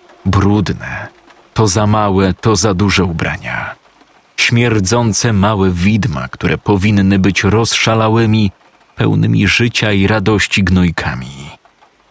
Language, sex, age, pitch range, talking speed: Polish, male, 40-59, 95-110 Hz, 100 wpm